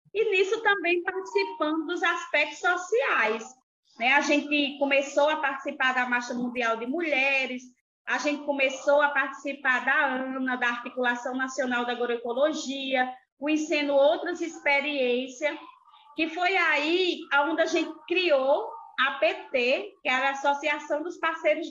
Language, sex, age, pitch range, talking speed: Portuguese, female, 20-39, 270-355 Hz, 135 wpm